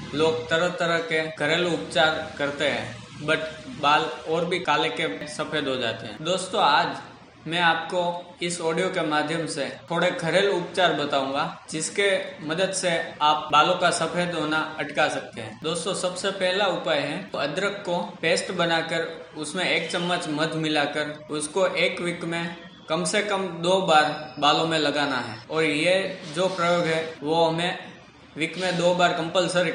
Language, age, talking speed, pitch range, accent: Hindi, 20-39, 165 wpm, 155-180 Hz, native